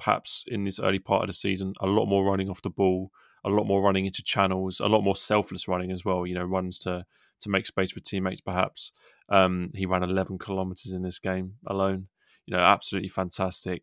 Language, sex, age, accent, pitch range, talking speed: English, male, 20-39, British, 95-105 Hz, 220 wpm